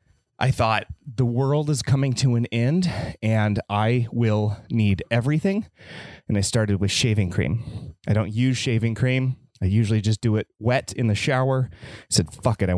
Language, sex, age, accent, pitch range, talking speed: English, male, 30-49, American, 95-120 Hz, 185 wpm